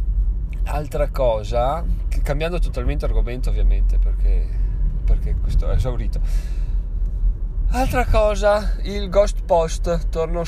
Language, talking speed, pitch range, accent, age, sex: Italian, 105 wpm, 90-125 Hz, native, 20-39, male